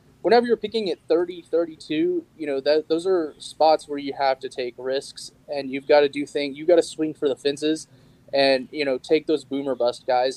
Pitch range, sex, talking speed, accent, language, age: 130-150 Hz, male, 220 wpm, American, English, 20-39